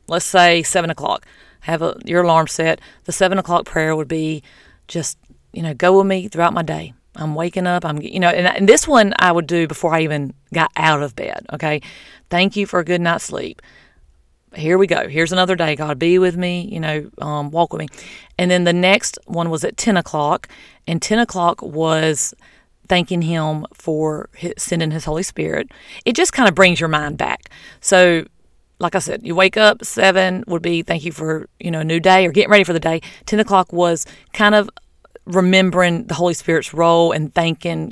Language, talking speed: English, 205 wpm